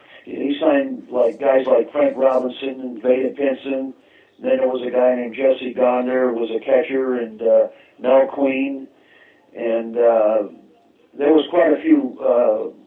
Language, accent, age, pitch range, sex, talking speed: English, American, 50-69, 125-160 Hz, male, 165 wpm